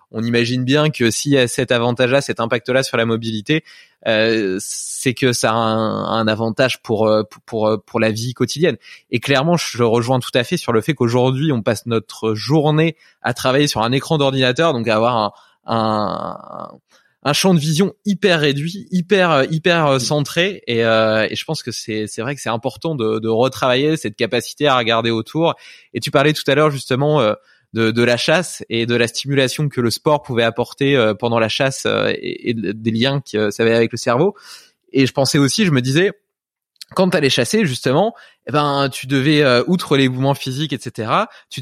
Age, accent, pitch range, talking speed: 20-39, French, 115-155 Hz, 205 wpm